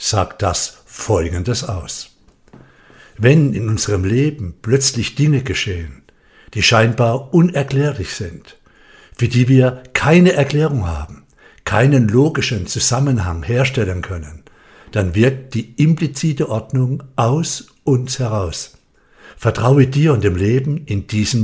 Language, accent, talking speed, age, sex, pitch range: German, German, 115 wpm, 60-79, male, 100-140 Hz